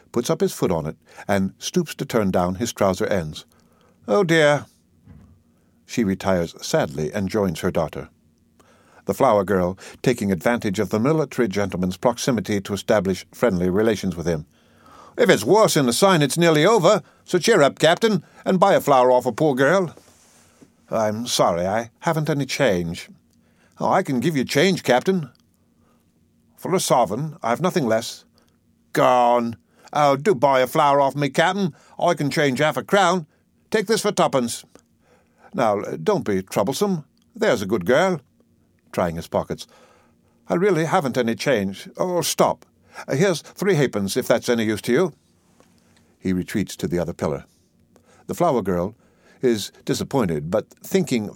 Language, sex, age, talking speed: English, male, 60-79, 160 wpm